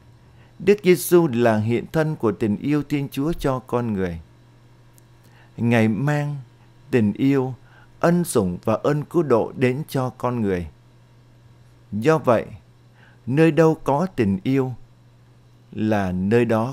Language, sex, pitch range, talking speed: Vietnamese, male, 115-135 Hz, 135 wpm